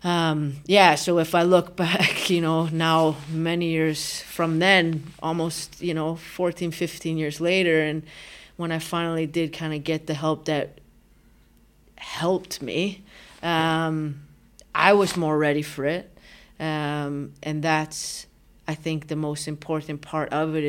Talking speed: 150 wpm